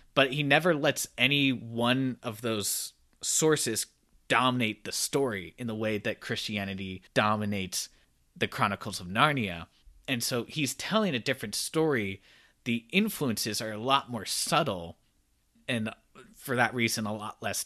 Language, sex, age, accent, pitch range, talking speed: English, male, 20-39, American, 105-135 Hz, 145 wpm